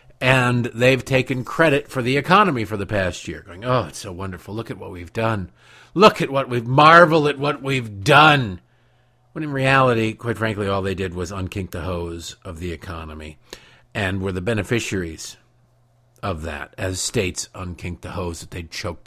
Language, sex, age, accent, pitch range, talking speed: English, male, 50-69, American, 95-140 Hz, 185 wpm